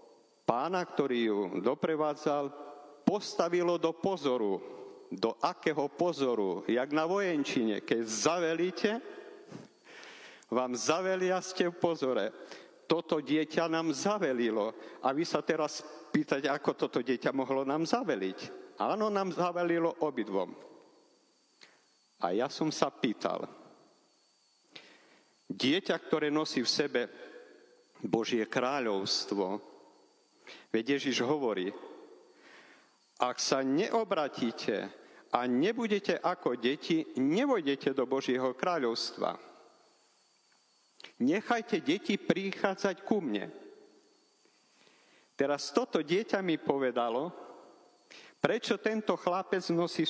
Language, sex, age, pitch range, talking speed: Slovak, male, 50-69, 130-200 Hz, 95 wpm